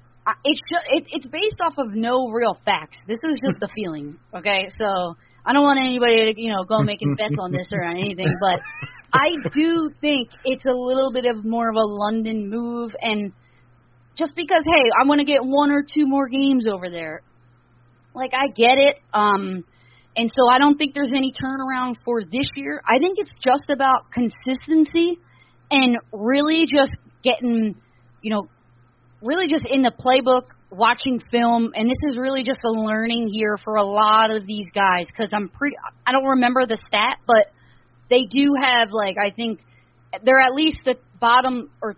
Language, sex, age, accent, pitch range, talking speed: English, female, 30-49, American, 175-255 Hz, 185 wpm